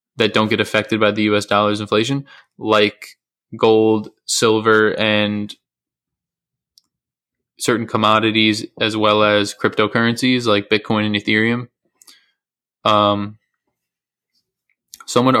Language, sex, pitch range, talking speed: English, male, 105-115 Hz, 95 wpm